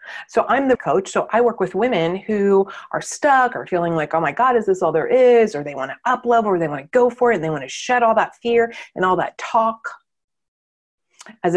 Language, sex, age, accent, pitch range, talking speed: English, female, 30-49, American, 175-230 Hz, 255 wpm